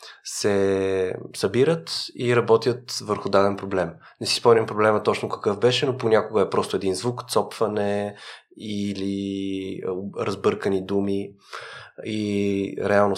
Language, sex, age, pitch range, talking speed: Bulgarian, male, 20-39, 95-110 Hz, 120 wpm